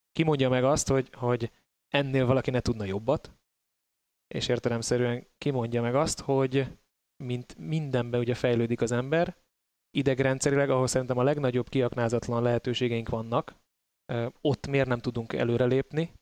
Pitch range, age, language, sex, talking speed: 120-135 Hz, 20-39, Hungarian, male, 130 wpm